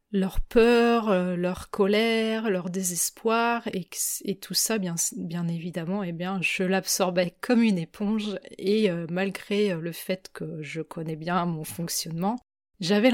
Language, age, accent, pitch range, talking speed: French, 30-49, French, 175-205 Hz, 135 wpm